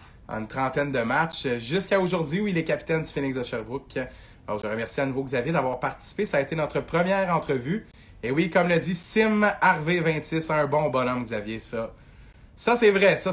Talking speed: 210 wpm